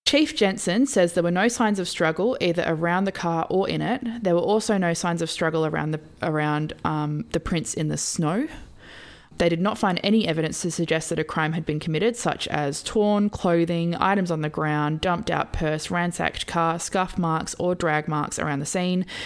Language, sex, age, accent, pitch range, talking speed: English, female, 20-39, Australian, 160-205 Hz, 210 wpm